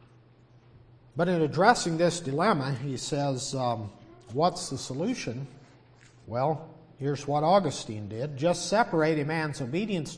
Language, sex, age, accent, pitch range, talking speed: English, male, 50-69, American, 130-175 Hz, 125 wpm